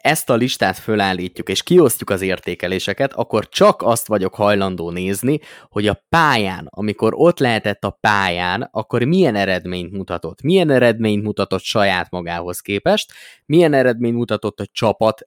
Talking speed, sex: 145 wpm, male